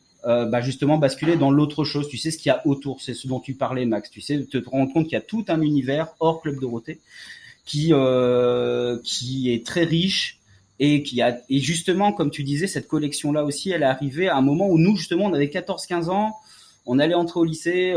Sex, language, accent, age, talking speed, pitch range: male, French, French, 30-49, 235 wpm, 120-155 Hz